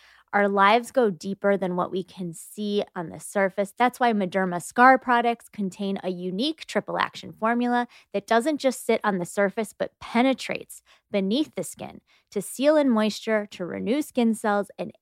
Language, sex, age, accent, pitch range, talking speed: English, female, 20-39, American, 185-230 Hz, 175 wpm